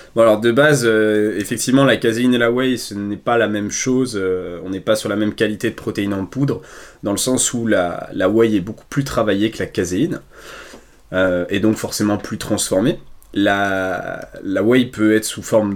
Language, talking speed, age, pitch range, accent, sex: French, 215 wpm, 20-39, 100-130 Hz, French, male